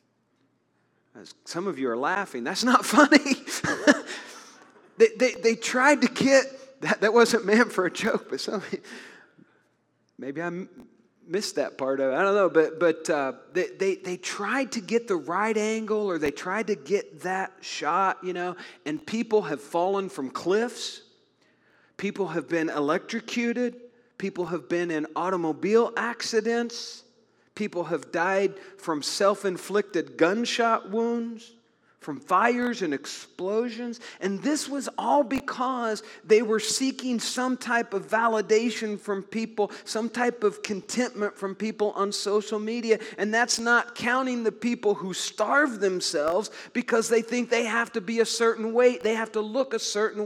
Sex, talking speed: male, 160 wpm